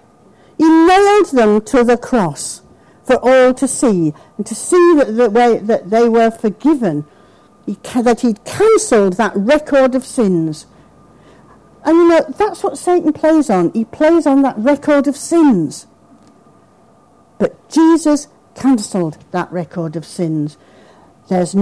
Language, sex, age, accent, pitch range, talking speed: English, female, 60-79, British, 195-310 Hz, 140 wpm